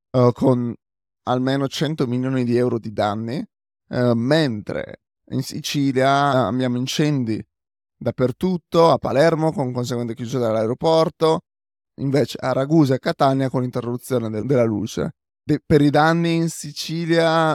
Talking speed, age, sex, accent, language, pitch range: 120 wpm, 20-39, male, native, Italian, 115-145 Hz